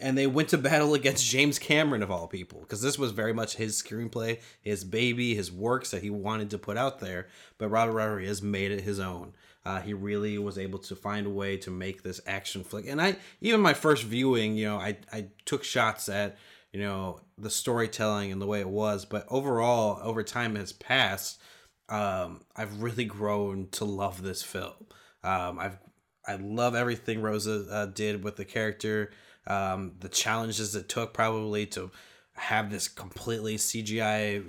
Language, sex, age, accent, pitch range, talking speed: English, male, 20-39, American, 100-115 Hz, 190 wpm